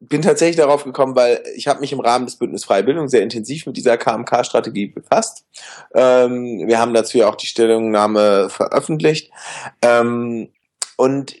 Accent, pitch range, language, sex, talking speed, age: German, 115-140 Hz, German, male, 165 wpm, 20-39